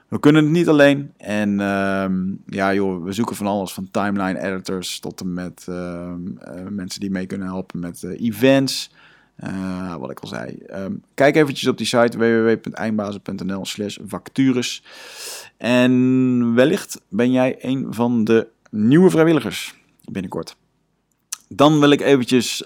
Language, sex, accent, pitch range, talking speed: Dutch, male, Dutch, 95-120 Hz, 145 wpm